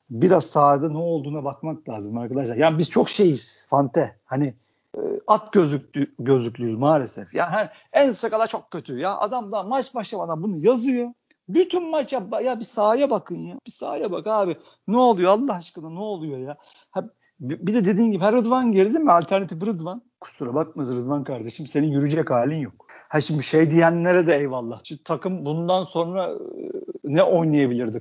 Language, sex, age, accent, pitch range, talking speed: Turkish, male, 50-69, native, 140-200 Hz, 170 wpm